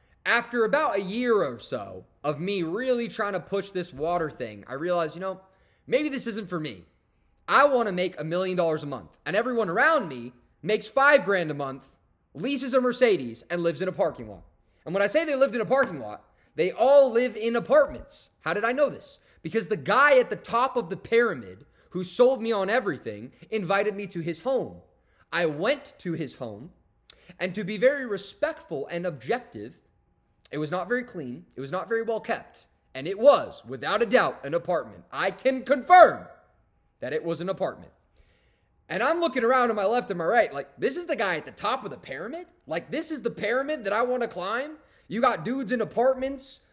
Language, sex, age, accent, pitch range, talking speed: English, male, 20-39, American, 180-260 Hz, 210 wpm